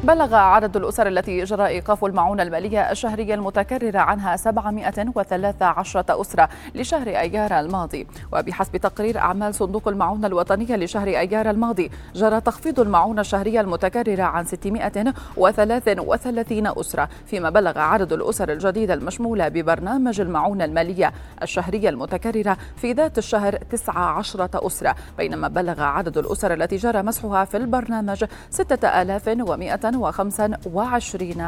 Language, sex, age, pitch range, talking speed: Arabic, female, 30-49, 190-225 Hz, 110 wpm